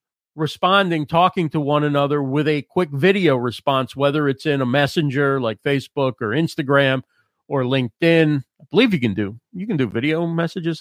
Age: 40-59